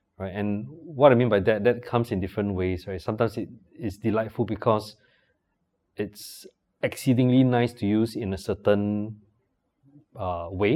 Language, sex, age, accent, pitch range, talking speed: English, male, 20-39, Malaysian, 100-125 Hz, 145 wpm